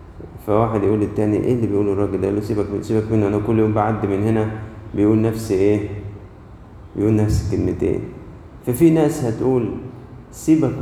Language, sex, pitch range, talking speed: Arabic, male, 100-120 Hz, 160 wpm